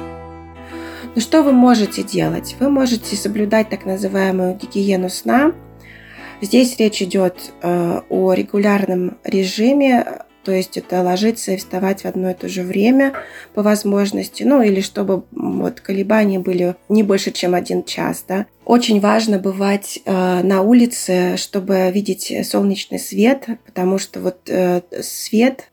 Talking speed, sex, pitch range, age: 125 wpm, female, 185-215 Hz, 20-39